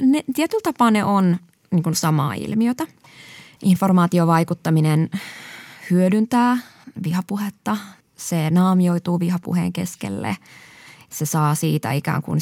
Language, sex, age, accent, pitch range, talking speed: Finnish, female, 20-39, native, 150-195 Hz, 85 wpm